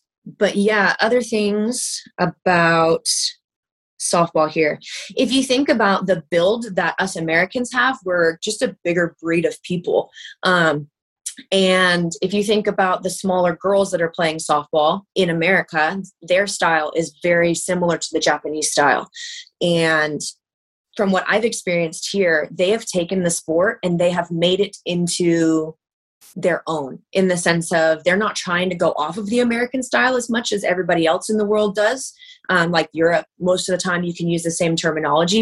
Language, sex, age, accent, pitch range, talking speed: English, female, 20-39, American, 165-200 Hz, 175 wpm